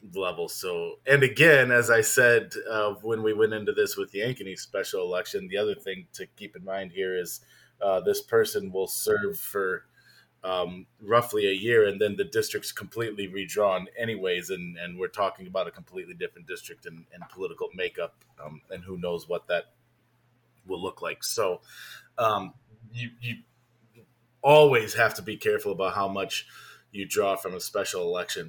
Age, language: 30-49, English